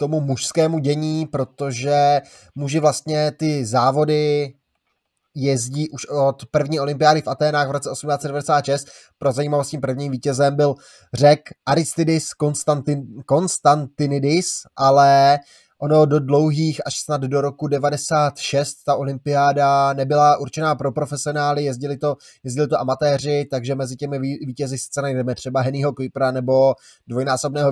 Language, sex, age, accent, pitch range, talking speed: Czech, male, 20-39, native, 135-150 Hz, 130 wpm